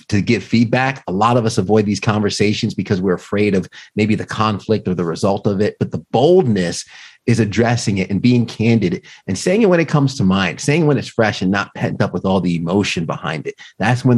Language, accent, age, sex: English, American, 30-49, male